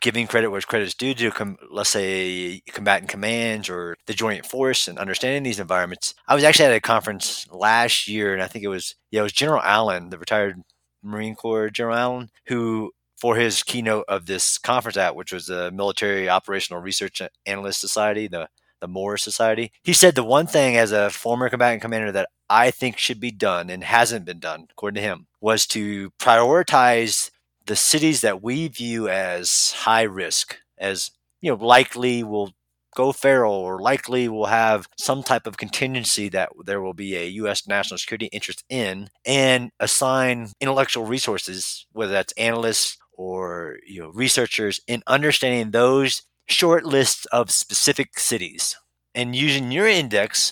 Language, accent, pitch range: English, American, 95-125 Hz